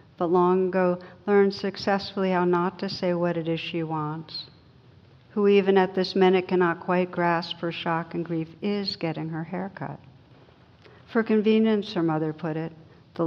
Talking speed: 170 wpm